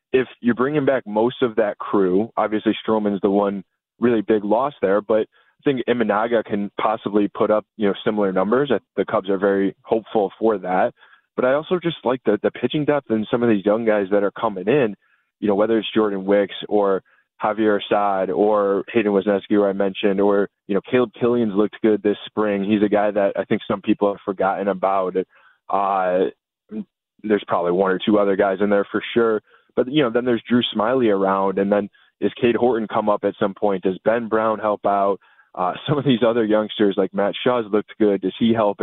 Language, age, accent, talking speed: English, 20-39, American, 215 wpm